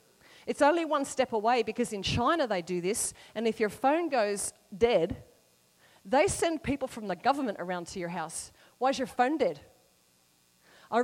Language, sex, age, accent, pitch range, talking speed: English, female, 40-59, Australian, 195-265 Hz, 180 wpm